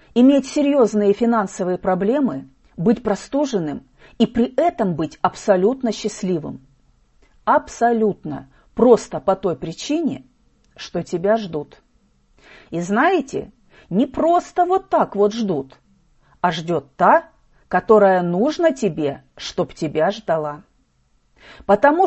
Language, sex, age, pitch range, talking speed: Russian, female, 40-59, 175-265 Hz, 105 wpm